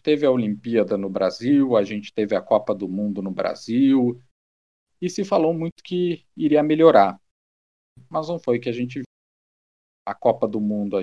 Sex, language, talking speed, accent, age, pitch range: male, Portuguese, 175 wpm, Brazilian, 40-59, 105-155 Hz